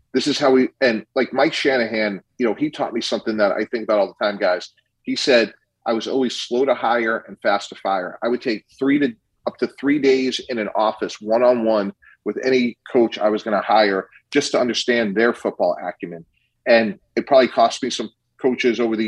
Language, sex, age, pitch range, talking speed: English, male, 40-59, 110-125 Hz, 220 wpm